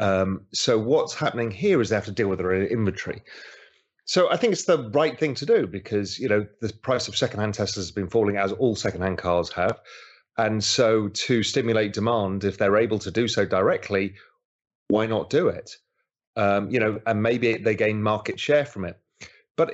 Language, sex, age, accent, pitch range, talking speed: English, male, 30-49, British, 100-140 Hz, 200 wpm